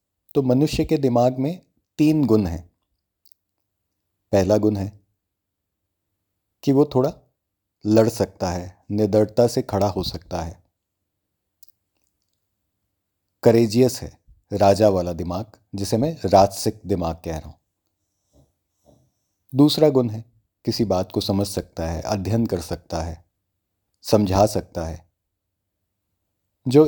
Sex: male